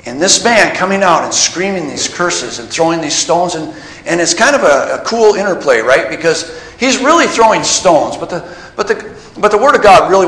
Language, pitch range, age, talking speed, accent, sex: English, 140-205 Hz, 50-69, 220 wpm, American, male